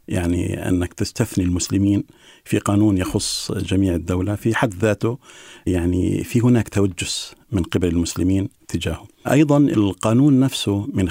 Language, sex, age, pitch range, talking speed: Arabic, male, 50-69, 95-115 Hz, 130 wpm